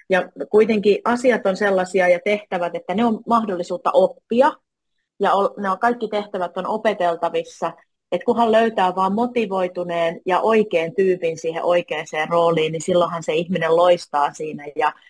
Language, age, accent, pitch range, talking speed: Finnish, 30-49, native, 170-200 Hz, 140 wpm